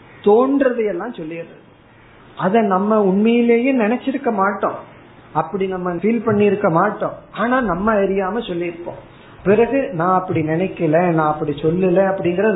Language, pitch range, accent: Tamil, 150-205 Hz, native